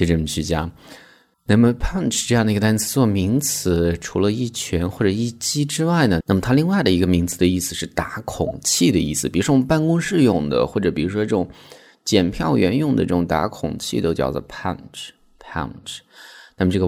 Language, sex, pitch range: Chinese, male, 85-115 Hz